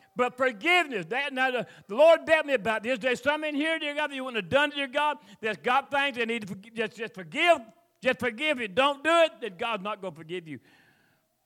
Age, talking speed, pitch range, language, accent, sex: 50-69, 250 wpm, 210-275 Hz, English, American, male